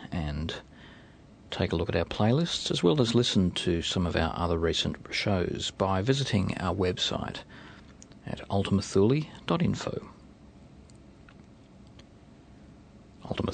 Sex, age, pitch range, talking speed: male, 40-59, 80-100 Hz, 110 wpm